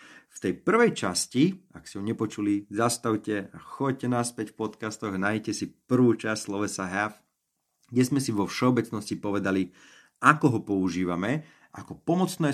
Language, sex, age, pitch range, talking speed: Slovak, male, 30-49, 95-125 Hz, 150 wpm